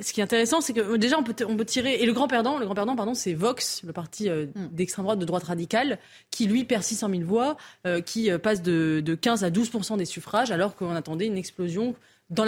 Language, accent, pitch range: French, French, 175-230 Hz